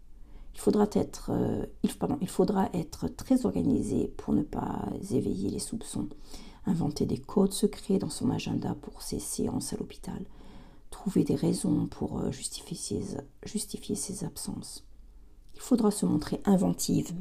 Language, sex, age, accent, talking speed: French, female, 50-69, French, 145 wpm